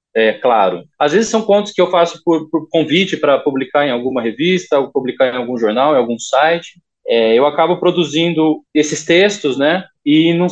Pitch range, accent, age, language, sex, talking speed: 150-185 Hz, Brazilian, 20-39, Portuguese, male, 195 wpm